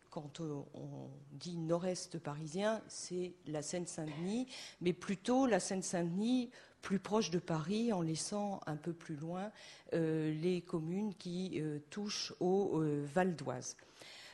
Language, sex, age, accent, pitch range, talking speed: French, female, 50-69, French, 170-230 Hz, 130 wpm